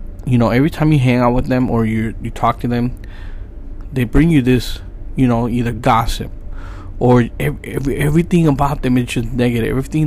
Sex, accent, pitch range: male, American, 95-145 Hz